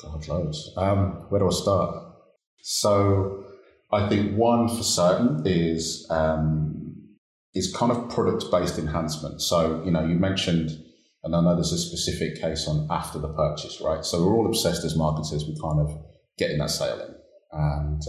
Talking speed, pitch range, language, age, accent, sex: 170 wpm, 80-95 Hz, English, 30-49, British, male